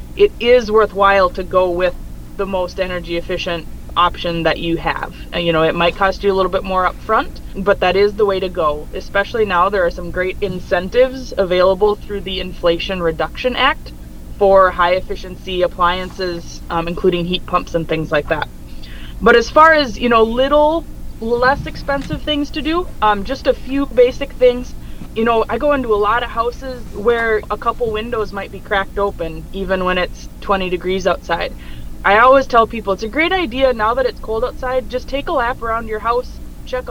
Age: 20-39